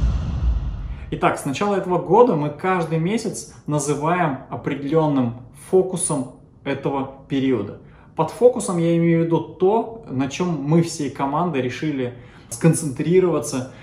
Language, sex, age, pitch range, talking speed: Russian, male, 20-39, 130-170 Hz, 115 wpm